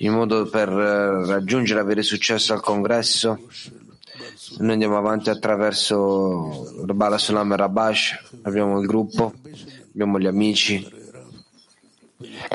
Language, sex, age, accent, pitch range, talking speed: Italian, male, 30-49, native, 100-115 Hz, 105 wpm